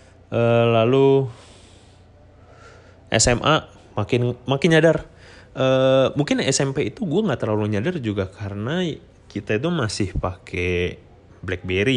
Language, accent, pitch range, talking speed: Indonesian, native, 90-110 Hz, 105 wpm